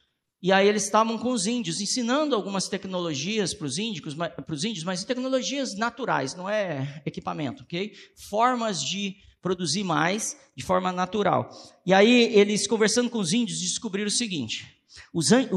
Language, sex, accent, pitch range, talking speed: Portuguese, male, Brazilian, 155-220 Hz, 155 wpm